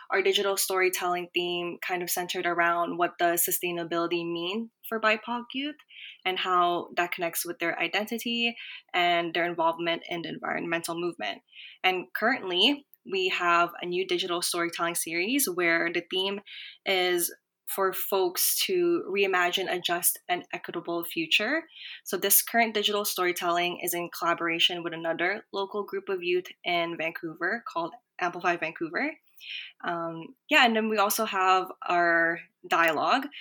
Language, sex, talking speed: English, female, 140 wpm